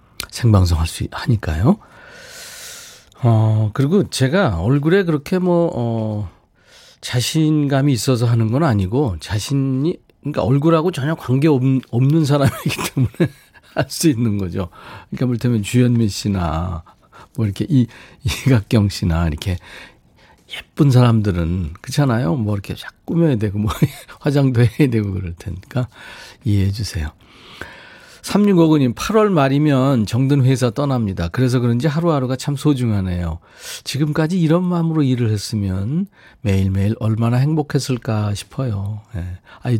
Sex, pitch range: male, 100-145 Hz